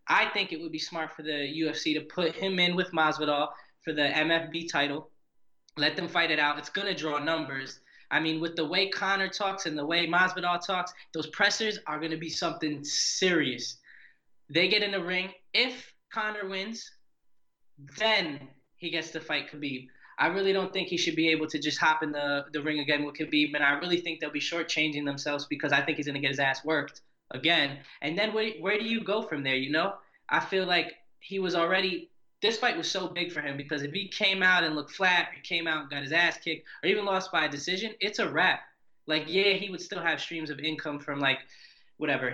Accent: American